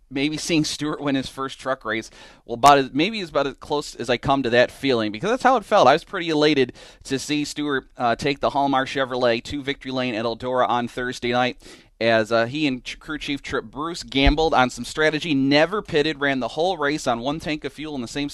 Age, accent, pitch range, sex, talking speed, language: 30-49, American, 115-145 Hz, male, 240 wpm, English